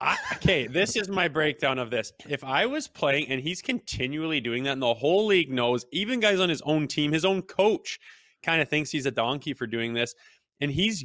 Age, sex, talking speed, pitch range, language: 20-39, male, 225 wpm, 125-170 Hz, English